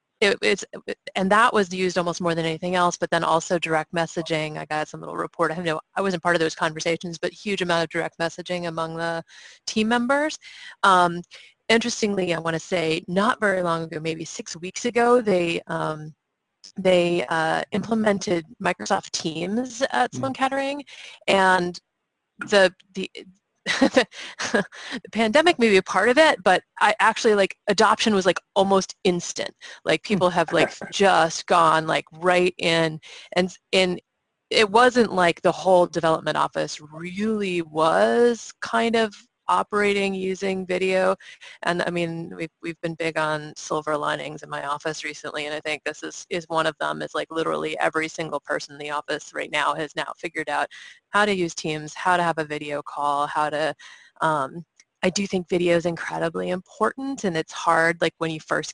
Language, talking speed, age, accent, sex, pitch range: English, 175 wpm, 30-49, American, female, 160-200 Hz